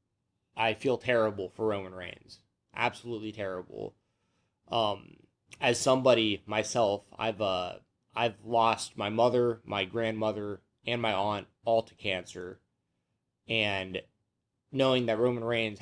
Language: English